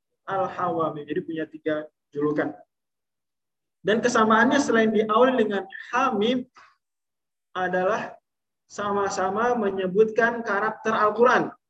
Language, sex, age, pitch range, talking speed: Indonesian, male, 20-39, 175-245 Hz, 85 wpm